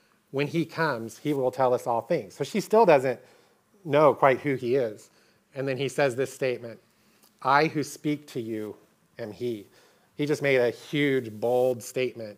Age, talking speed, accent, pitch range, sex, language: 30-49, 185 wpm, American, 125-145 Hz, male, English